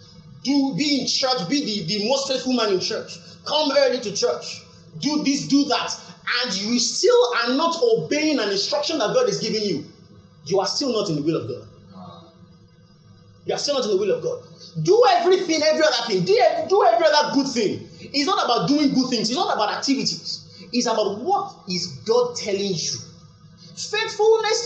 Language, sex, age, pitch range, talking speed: English, male, 30-49, 220-335 Hz, 195 wpm